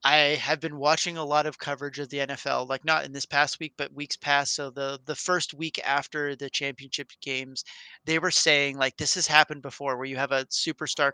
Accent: American